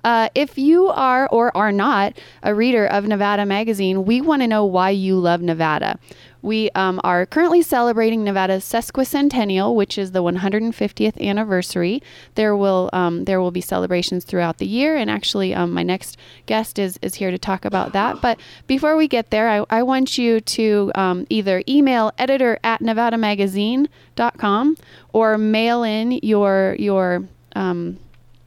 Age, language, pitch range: 30-49, English, 185-235 Hz